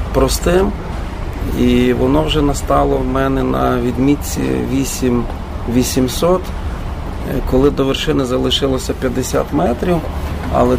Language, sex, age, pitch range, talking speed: Ukrainian, male, 40-59, 85-135 Hz, 95 wpm